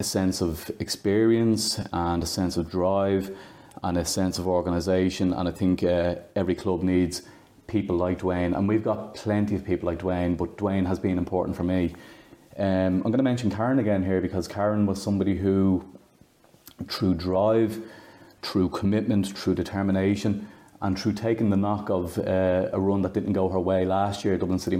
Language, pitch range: English, 90-105 Hz